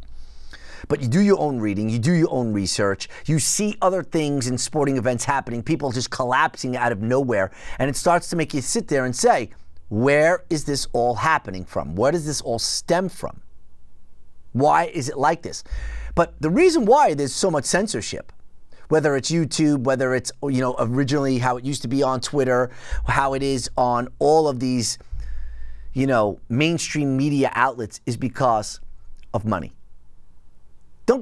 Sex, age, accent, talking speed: male, 30-49, American, 175 wpm